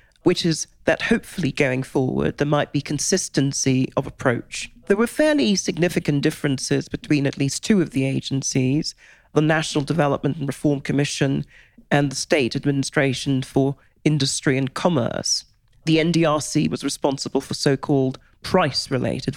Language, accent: English, British